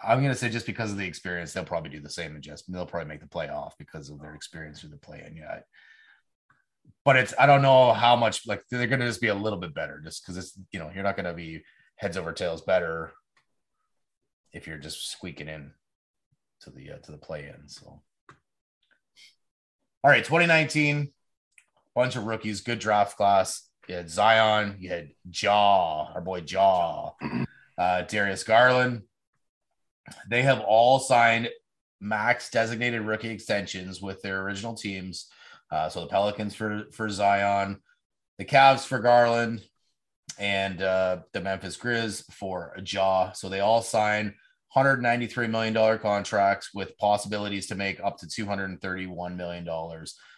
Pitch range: 90-115 Hz